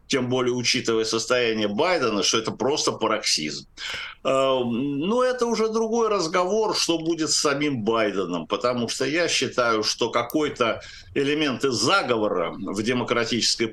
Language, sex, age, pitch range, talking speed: Russian, male, 60-79, 110-145 Hz, 125 wpm